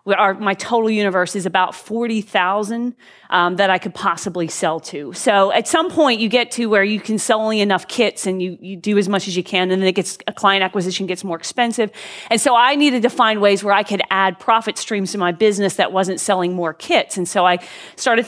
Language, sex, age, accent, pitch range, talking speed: English, female, 40-59, American, 190-230 Hz, 235 wpm